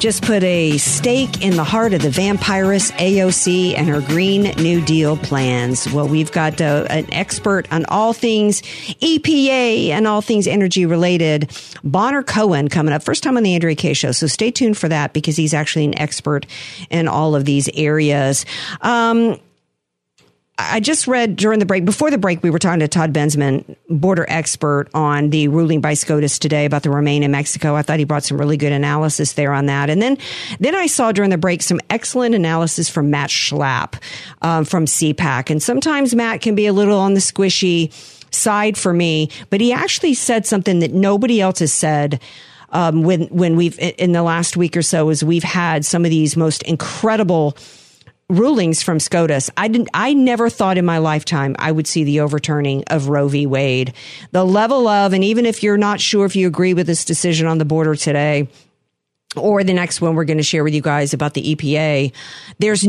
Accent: American